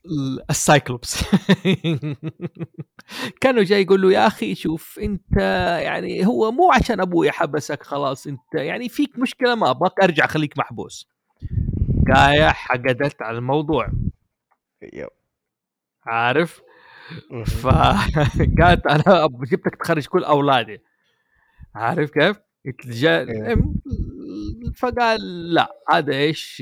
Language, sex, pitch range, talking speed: Arabic, male, 140-195 Hz, 95 wpm